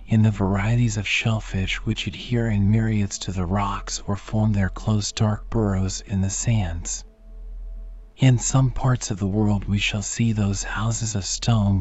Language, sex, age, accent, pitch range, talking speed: English, male, 40-59, American, 100-115 Hz, 175 wpm